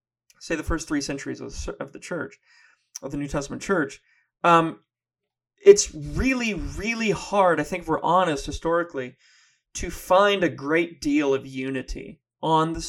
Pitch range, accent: 140-190 Hz, American